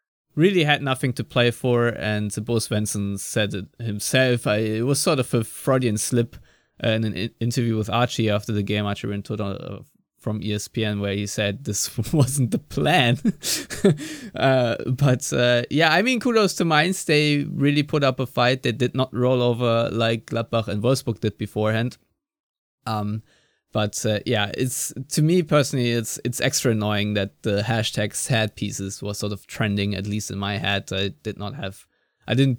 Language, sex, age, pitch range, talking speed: English, male, 20-39, 100-125 Hz, 180 wpm